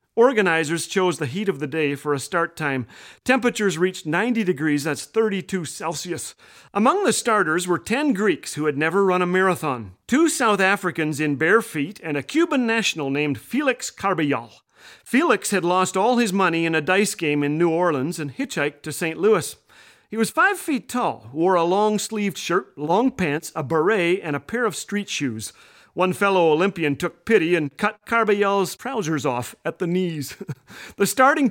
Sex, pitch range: male, 155-210 Hz